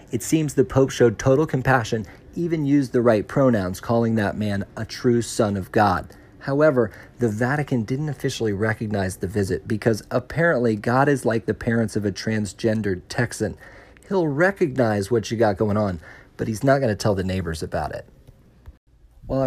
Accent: American